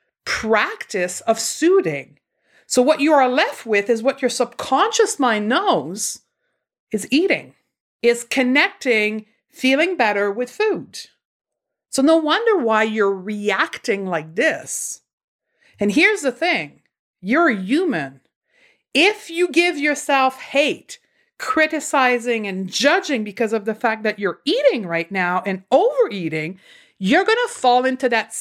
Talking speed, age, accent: 135 wpm, 50-69, American